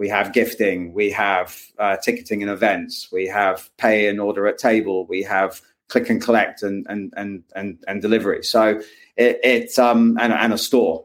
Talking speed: 190 wpm